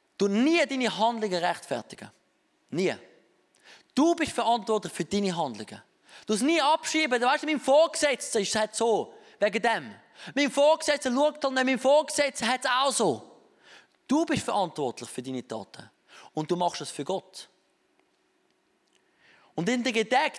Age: 20-39